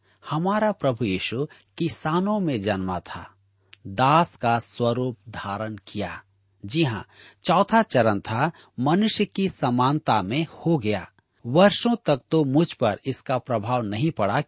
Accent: native